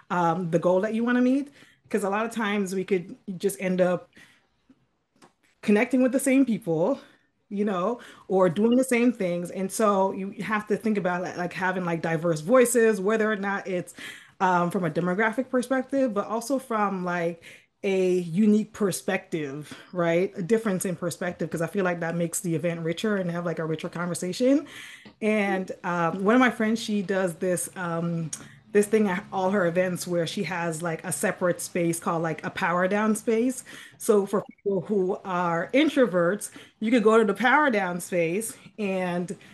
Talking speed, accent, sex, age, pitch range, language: 185 wpm, American, female, 20-39, 175-220 Hz, English